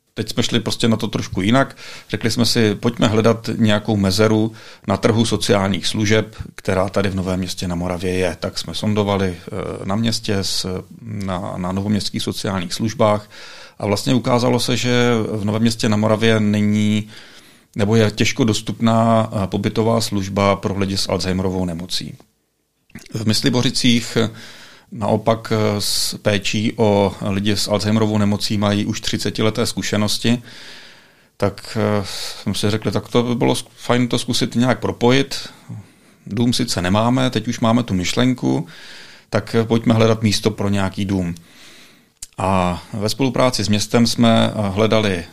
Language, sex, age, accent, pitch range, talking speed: Czech, male, 40-59, native, 100-115 Hz, 145 wpm